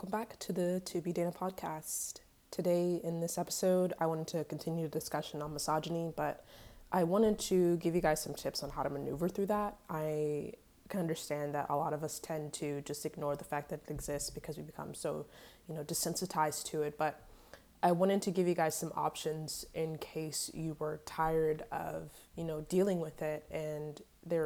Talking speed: 205 wpm